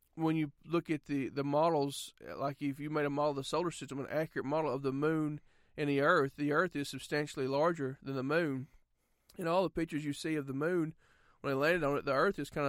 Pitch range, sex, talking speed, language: 140-170 Hz, male, 245 wpm, English